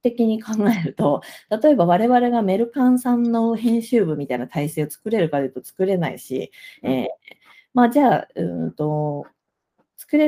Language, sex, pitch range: Japanese, female, 155-265 Hz